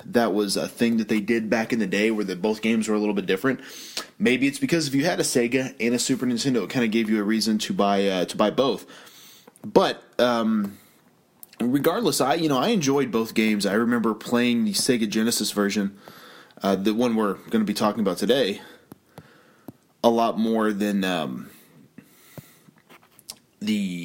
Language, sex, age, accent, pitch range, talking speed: English, male, 20-39, American, 100-130 Hz, 195 wpm